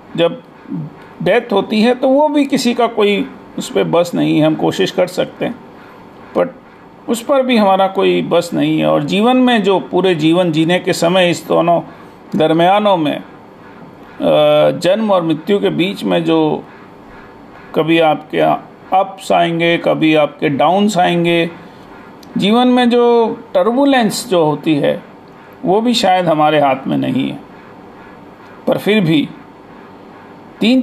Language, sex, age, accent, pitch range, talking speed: Hindi, male, 40-59, native, 160-225 Hz, 150 wpm